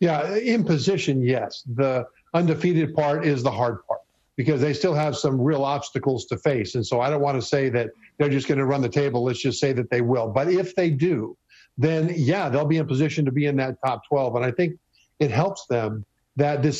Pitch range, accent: 125-155 Hz, American